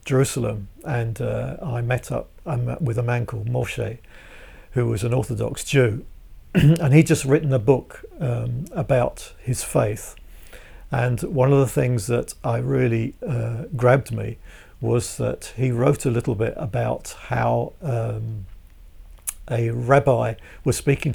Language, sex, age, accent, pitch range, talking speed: English, male, 50-69, British, 110-135 Hz, 145 wpm